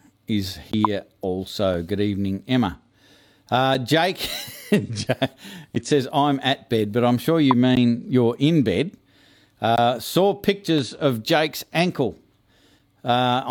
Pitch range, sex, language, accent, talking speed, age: 115-140 Hz, male, English, Australian, 125 wpm, 50-69